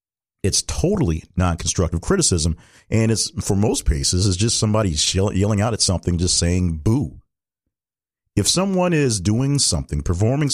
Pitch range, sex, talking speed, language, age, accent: 85-115 Hz, male, 140 wpm, English, 40-59, American